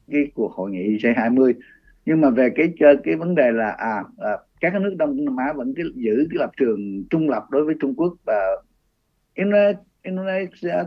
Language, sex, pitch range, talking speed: Vietnamese, male, 145-235 Hz, 190 wpm